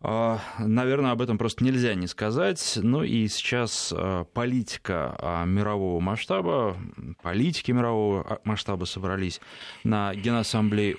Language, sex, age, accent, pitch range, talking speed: Russian, male, 20-39, native, 95-120 Hz, 105 wpm